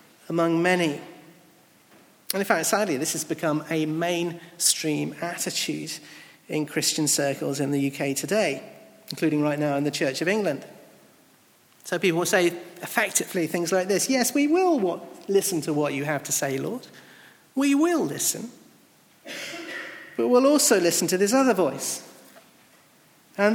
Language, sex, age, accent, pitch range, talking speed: English, male, 40-59, British, 150-210 Hz, 150 wpm